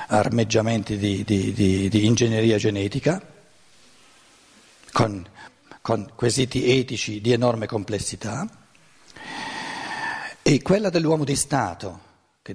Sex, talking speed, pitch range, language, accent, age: male, 85 wpm, 100-130 Hz, Italian, native, 50-69